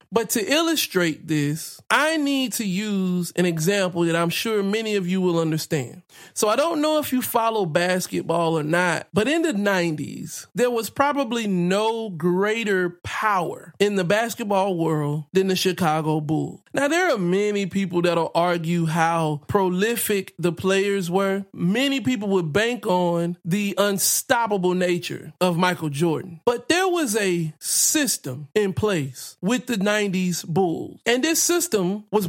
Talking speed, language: 160 wpm, English